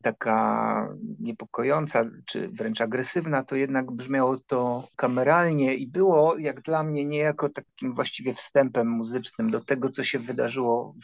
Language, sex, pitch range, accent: Polish, male, 120-150 Hz, native